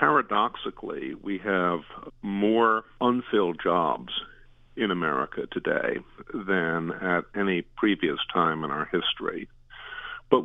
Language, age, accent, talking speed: English, 50-69, American, 105 wpm